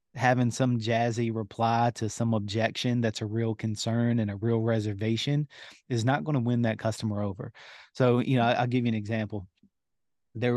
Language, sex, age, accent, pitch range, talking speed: English, male, 30-49, American, 105-120 Hz, 180 wpm